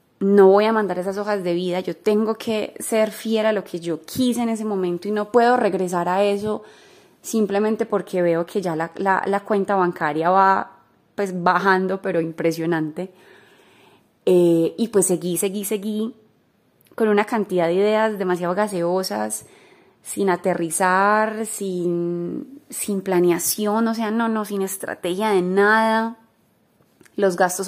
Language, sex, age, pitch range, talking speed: Spanish, female, 20-39, 180-220 Hz, 145 wpm